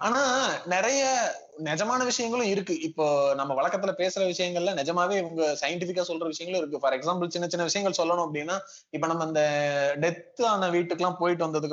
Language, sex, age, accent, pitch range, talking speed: Tamil, male, 20-39, native, 145-185 Hz, 155 wpm